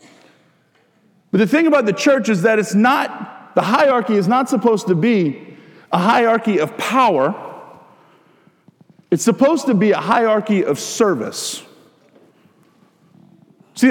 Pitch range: 180-230 Hz